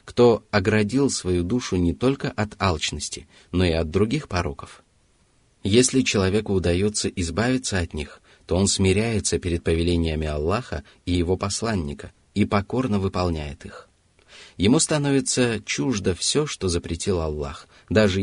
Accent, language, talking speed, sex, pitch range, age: native, Russian, 130 wpm, male, 85-105 Hz, 30-49